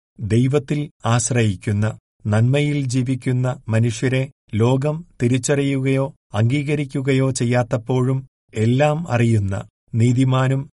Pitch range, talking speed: 115-135 Hz, 65 wpm